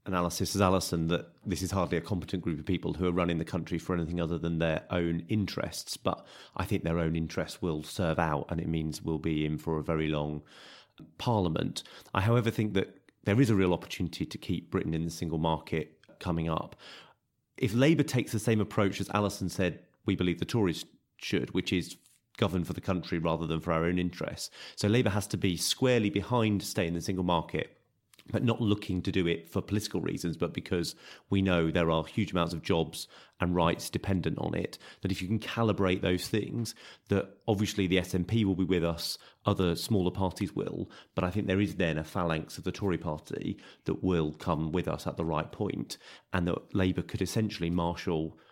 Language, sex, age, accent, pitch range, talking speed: English, male, 30-49, British, 85-105 Hz, 210 wpm